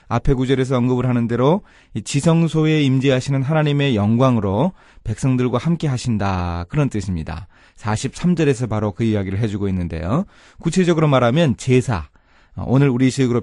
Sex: male